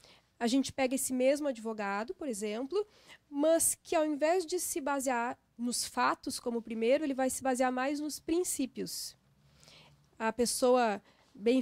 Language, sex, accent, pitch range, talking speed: Portuguese, female, Brazilian, 235-300 Hz, 155 wpm